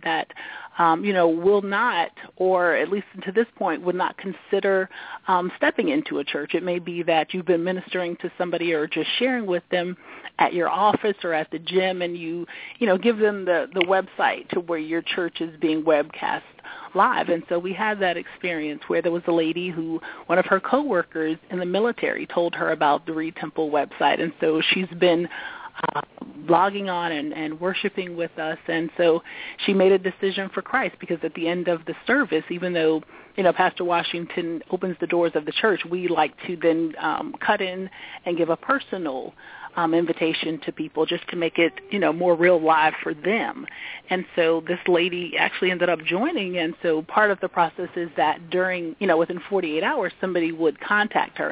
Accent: American